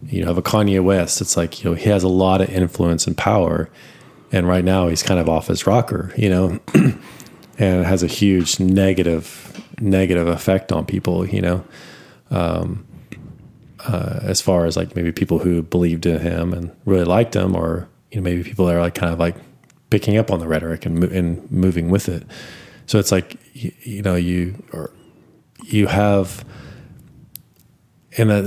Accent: American